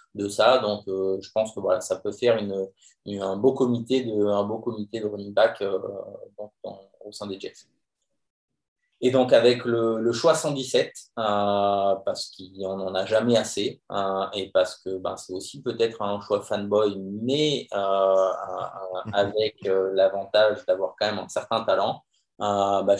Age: 20-39